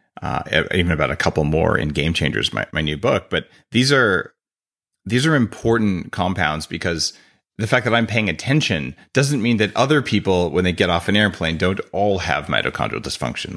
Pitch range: 85-120 Hz